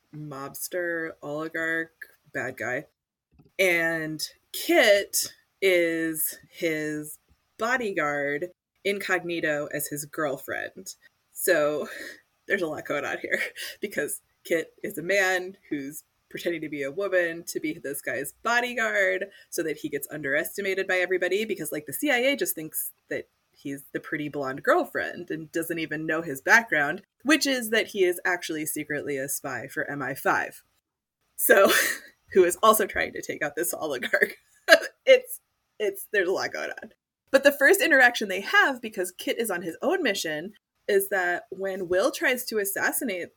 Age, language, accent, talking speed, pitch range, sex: 20-39, English, American, 150 wpm, 160-240 Hz, female